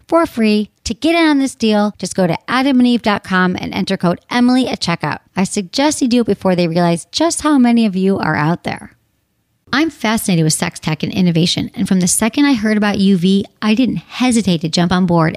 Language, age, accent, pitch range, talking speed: English, 40-59, American, 180-245 Hz, 220 wpm